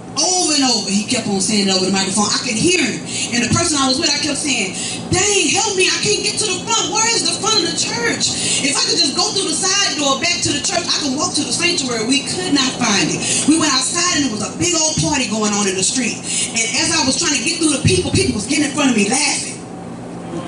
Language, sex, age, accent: English, female, 30-49, American